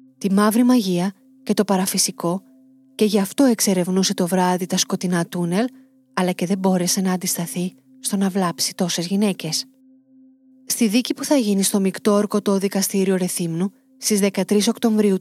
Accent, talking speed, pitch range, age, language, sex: native, 155 wpm, 185-235 Hz, 30-49, Greek, female